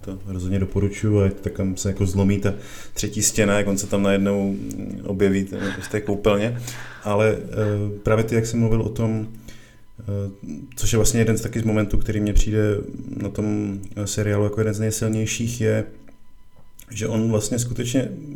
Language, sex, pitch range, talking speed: Czech, male, 100-115 Hz, 165 wpm